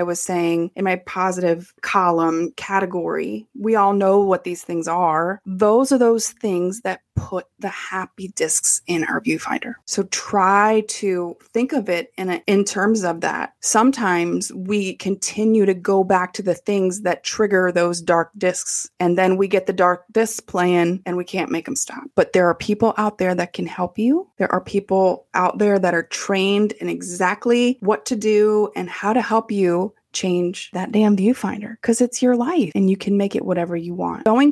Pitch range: 180-215 Hz